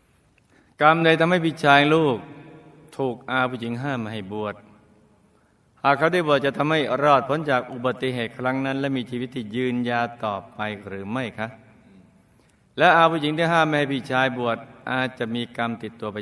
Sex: male